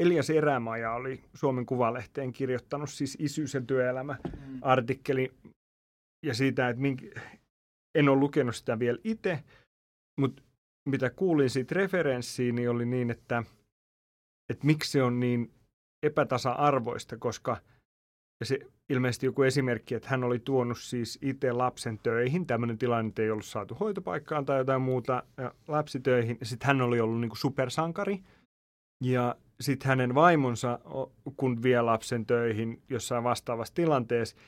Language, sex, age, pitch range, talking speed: Finnish, male, 30-49, 115-135 Hz, 135 wpm